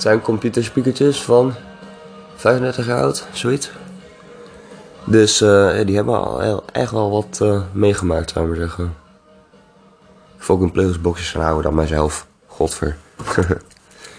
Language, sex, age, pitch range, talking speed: English, male, 20-39, 85-115 Hz, 125 wpm